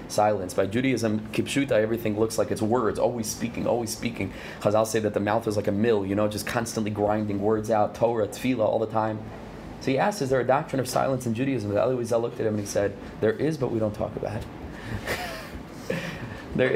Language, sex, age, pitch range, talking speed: English, male, 30-49, 110-140 Hz, 220 wpm